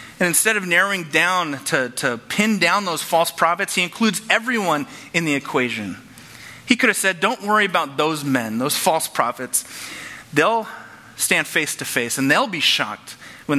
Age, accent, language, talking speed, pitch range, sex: 30-49, American, English, 175 wpm, 135-195 Hz, male